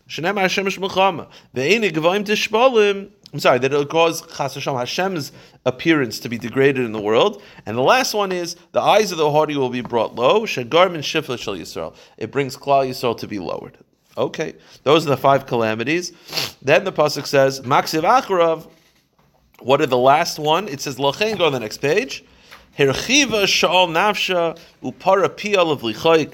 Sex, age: male, 40-59